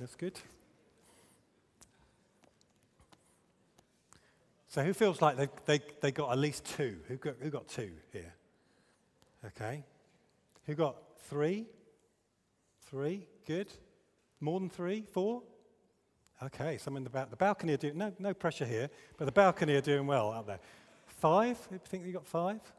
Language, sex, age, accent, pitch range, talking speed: English, male, 40-59, British, 125-180 Hz, 140 wpm